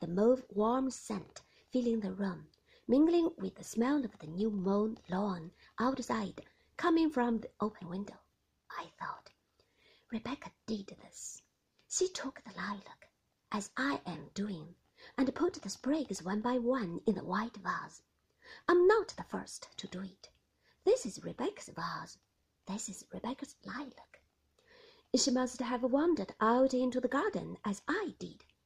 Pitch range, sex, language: 200-280 Hz, female, Chinese